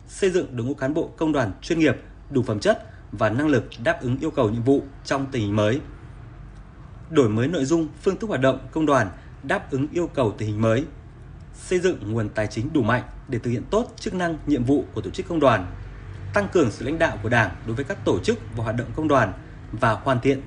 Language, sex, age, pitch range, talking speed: Vietnamese, male, 20-39, 115-155 Hz, 245 wpm